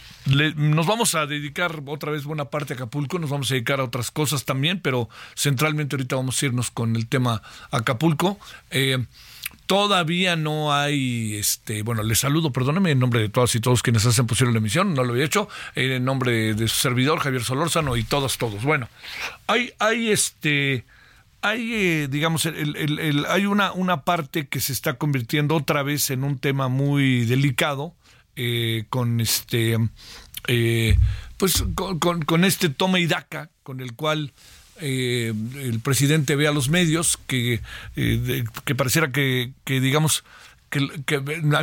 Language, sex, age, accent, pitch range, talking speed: Spanish, male, 50-69, Mexican, 125-165 Hz, 165 wpm